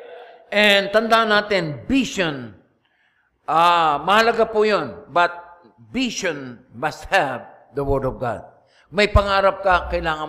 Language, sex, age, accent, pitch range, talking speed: English, male, 60-79, Filipino, 155-205 Hz, 120 wpm